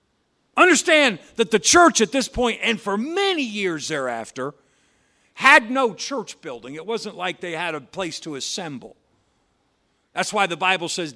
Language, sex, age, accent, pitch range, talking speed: English, male, 50-69, American, 160-230 Hz, 160 wpm